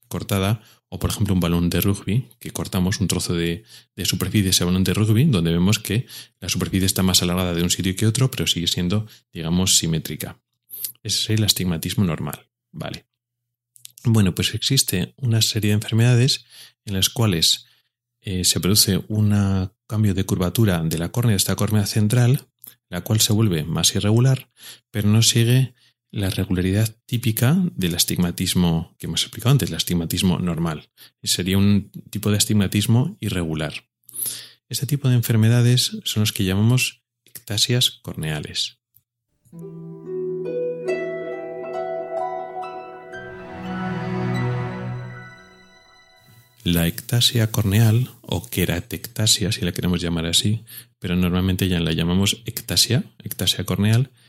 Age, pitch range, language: 30-49, 90-120 Hz, Spanish